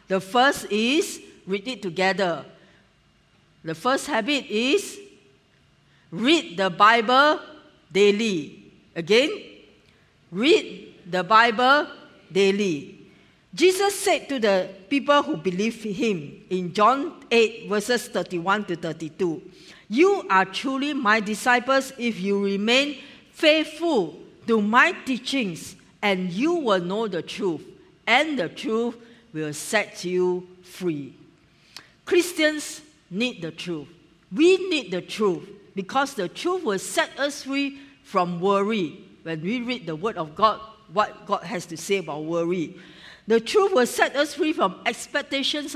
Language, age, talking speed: English, 50-69, 130 wpm